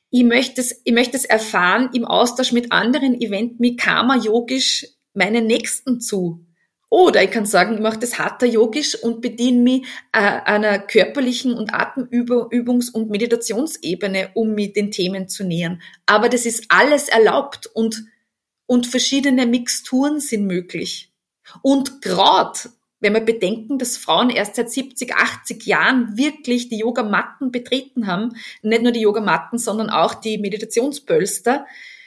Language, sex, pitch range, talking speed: German, female, 215-250 Hz, 145 wpm